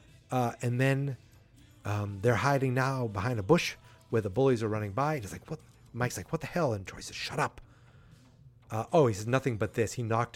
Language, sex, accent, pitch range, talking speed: English, male, American, 110-140 Hz, 225 wpm